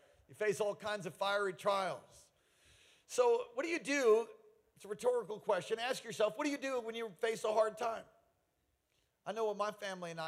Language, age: English, 40-59